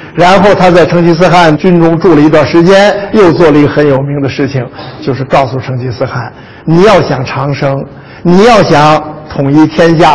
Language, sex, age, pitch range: Chinese, male, 50-69, 145-220 Hz